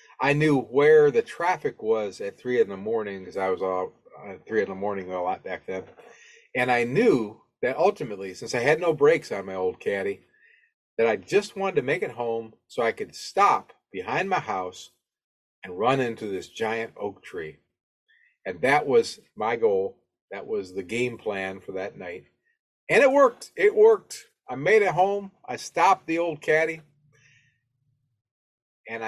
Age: 40-59